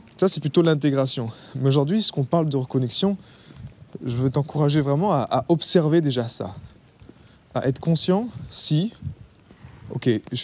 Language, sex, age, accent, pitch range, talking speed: French, male, 20-39, French, 120-155 Hz, 150 wpm